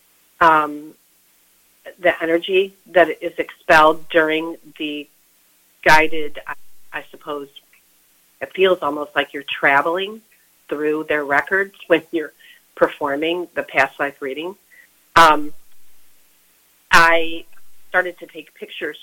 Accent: American